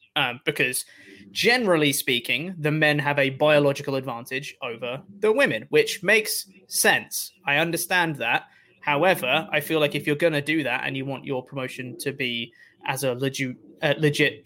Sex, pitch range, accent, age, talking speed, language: male, 145-185 Hz, British, 20-39, 170 wpm, English